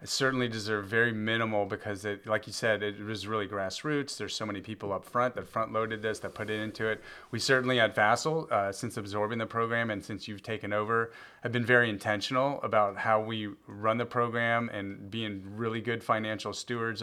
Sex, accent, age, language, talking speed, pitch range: male, American, 30-49, English, 195 wpm, 105-115 Hz